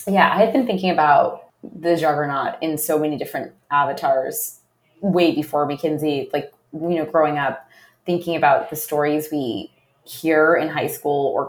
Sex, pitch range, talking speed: female, 150-175 Hz, 160 wpm